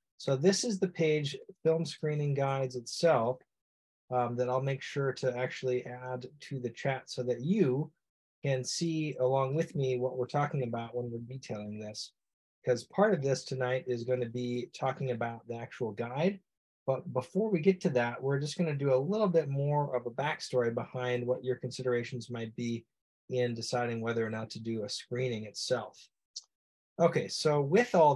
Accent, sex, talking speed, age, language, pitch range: American, male, 185 wpm, 30-49, English, 125-150 Hz